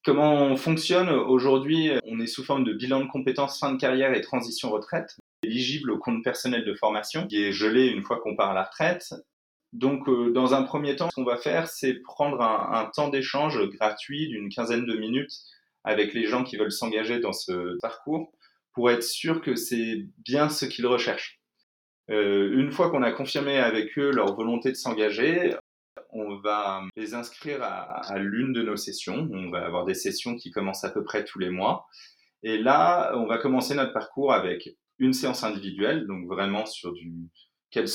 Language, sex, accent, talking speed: French, male, French, 195 wpm